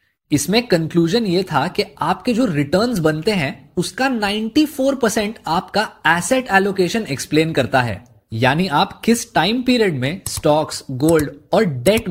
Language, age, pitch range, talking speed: Hindi, 20-39, 135-210 Hz, 145 wpm